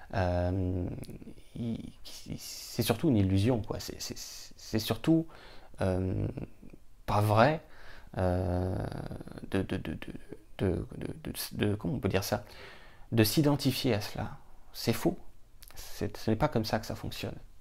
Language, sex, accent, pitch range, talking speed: French, male, French, 95-115 Hz, 95 wpm